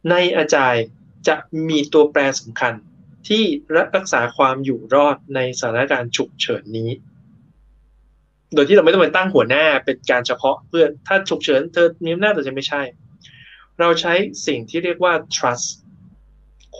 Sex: male